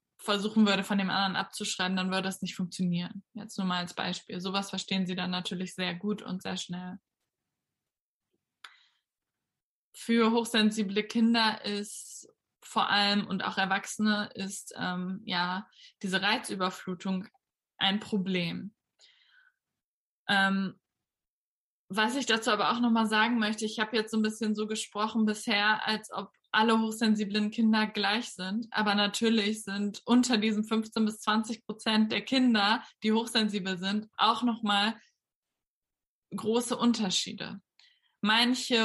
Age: 20-39